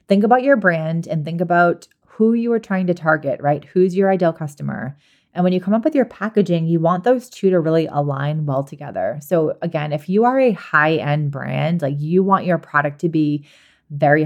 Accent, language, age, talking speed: American, English, 30-49, 215 wpm